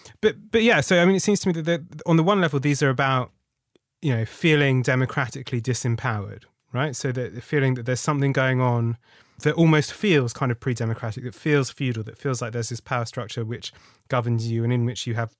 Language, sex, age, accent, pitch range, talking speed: English, male, 30-49, British, 125-165 Hz, 220 wpm